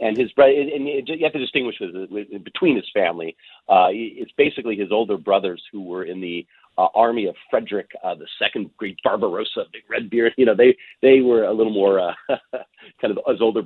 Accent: American